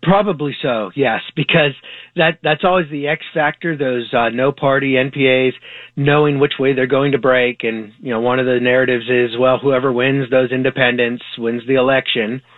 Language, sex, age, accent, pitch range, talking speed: English, male, 30-49, American, 125-150 Hz, 180 wpm